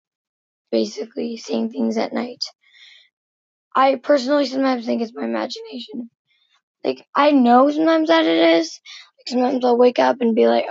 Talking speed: 150 wpm